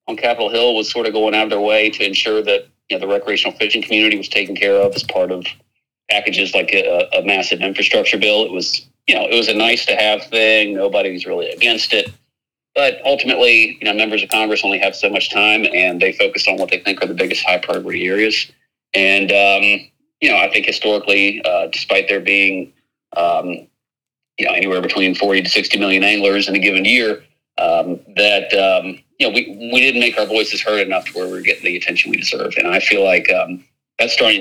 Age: 40-59